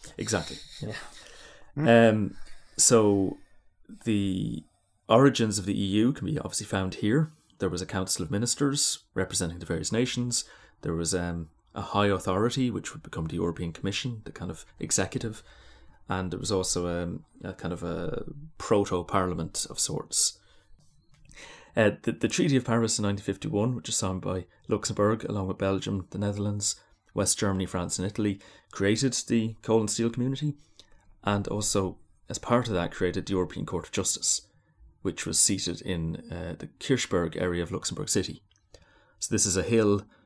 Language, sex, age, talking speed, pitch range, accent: English, male, 30-49, 160 wpm, 90-110 Hz, British